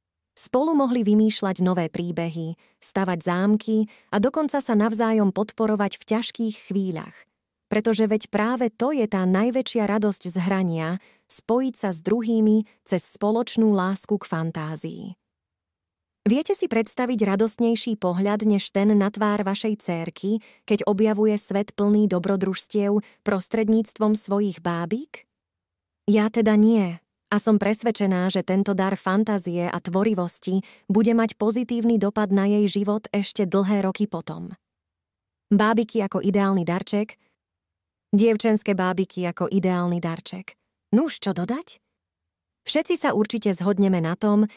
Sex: female